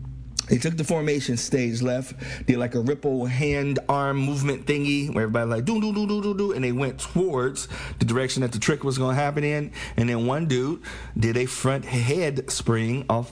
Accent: American